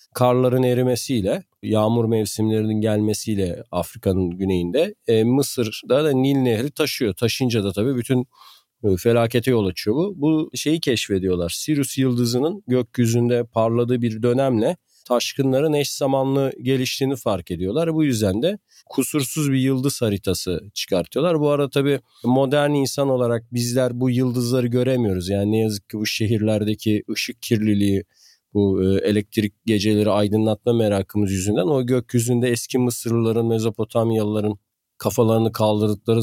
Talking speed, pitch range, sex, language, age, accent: 125 wpm, 105-130 Hz, male, Turkish, 40-59, native